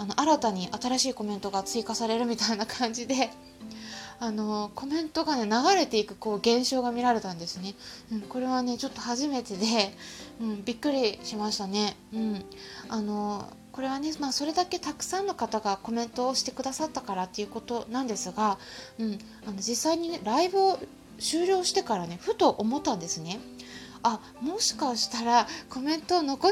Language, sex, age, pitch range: Japanese, female, 20-39, 210-280 Hz